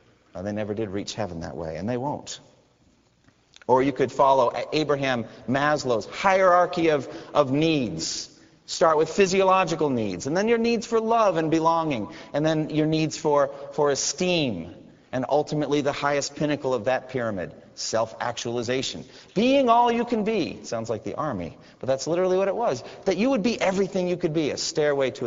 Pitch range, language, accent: 120-185 Hz, English, American